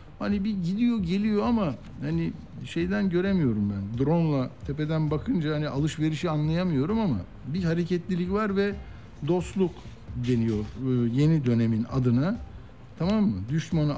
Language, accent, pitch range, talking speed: Turkish, native, 120-175 Hz, 120 wpm